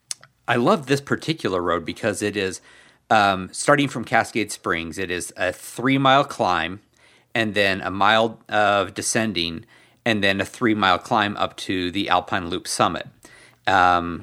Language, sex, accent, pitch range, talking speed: English, male, American, 95-115 Hz, 160 wpm